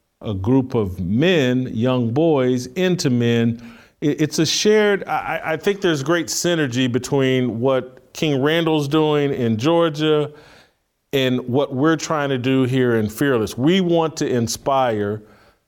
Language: English